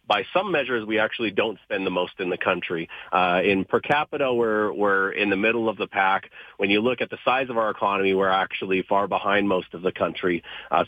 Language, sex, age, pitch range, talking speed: English, male, 40-59, 95-115 Hz, 230 wpm